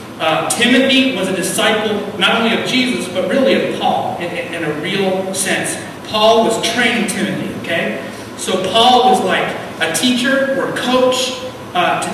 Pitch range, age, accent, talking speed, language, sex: 170-230 Hz, 40-59, American, 170 wpm, English, male